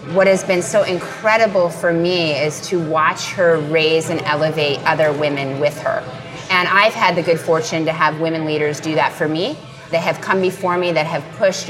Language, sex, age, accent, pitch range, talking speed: English, female, 30-49, American, 150-190 Hz, 205 wpm